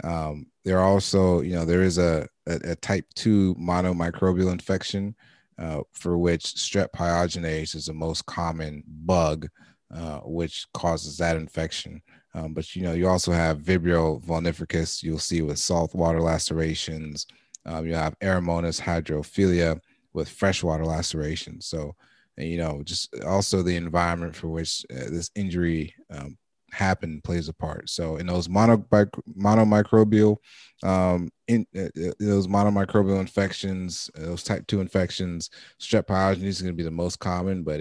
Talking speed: 150 wpm